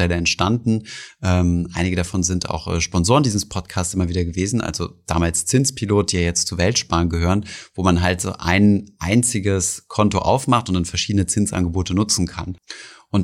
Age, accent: 30-49, German